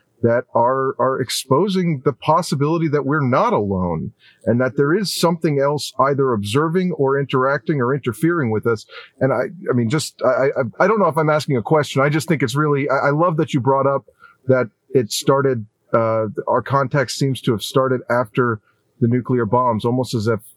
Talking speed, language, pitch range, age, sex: 200 wpm, English, 115-140 Hz, 40-59, male